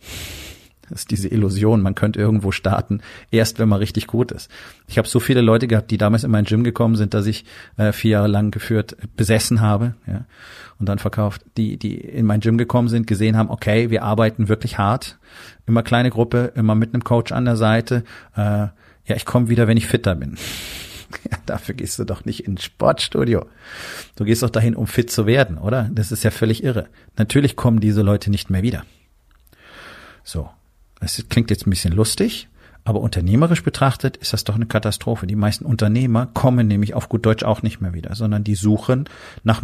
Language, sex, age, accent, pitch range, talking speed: German, male, 40-59, German, 105-120 Hz, 200 wpm